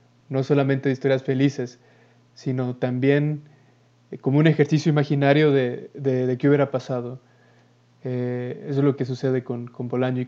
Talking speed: 160 wpm